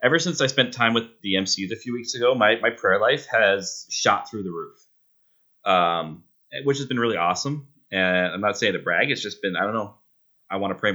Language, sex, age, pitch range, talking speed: English, male, 30-49, 90-120 Hz, 235 wpm